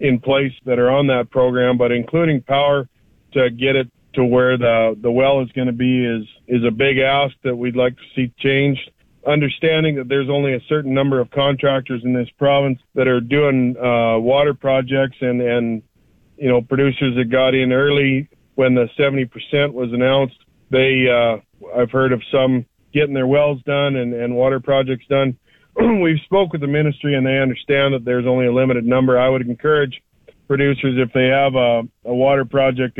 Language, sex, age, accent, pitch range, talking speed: English, male, 40-59, American, 125-140 Hz, 195 wpm